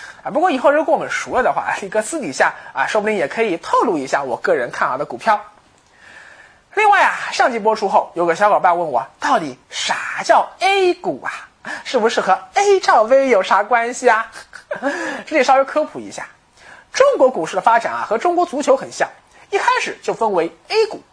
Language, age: Chinese, 20-39